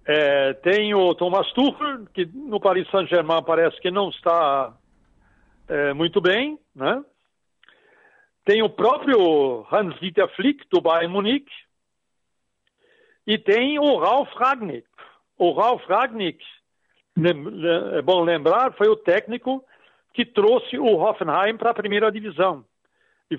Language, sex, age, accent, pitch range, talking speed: Portuguese, male, 60-79, Brazilian, 165-220 Hz, 125 wpm